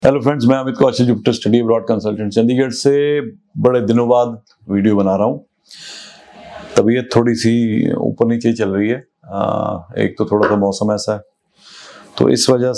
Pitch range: 105-120 Hz